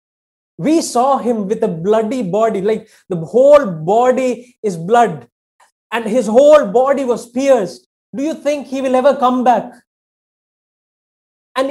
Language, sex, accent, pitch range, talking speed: English, male, Indian, 170-255 Hz, 145 wpm